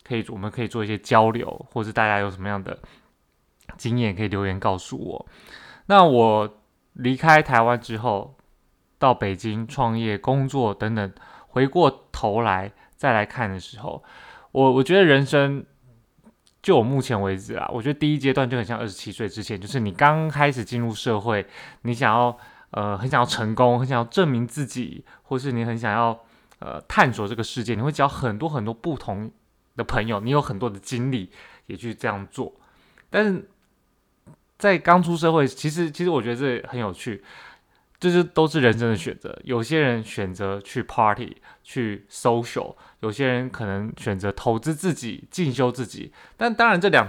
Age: 20-39